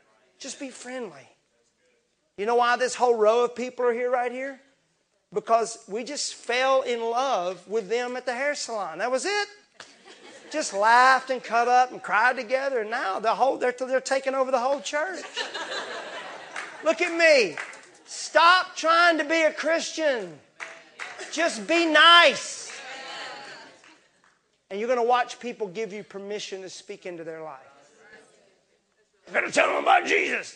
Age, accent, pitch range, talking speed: 40-59, American, 230-335 Hz, 150 wpm